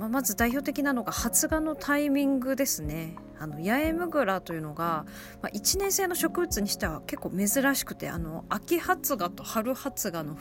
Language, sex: Japanese, female